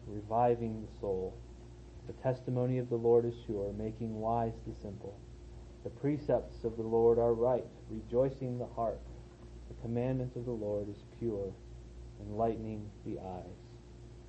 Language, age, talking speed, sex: English, 30-49, 145 wpm, male